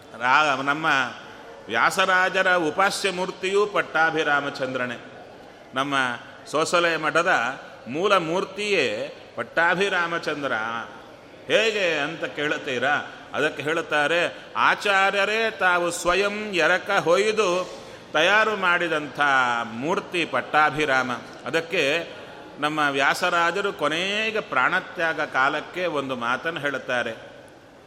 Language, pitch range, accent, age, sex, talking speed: Kannada, 155-190 Hz, native, 30-49, male, 75 wpm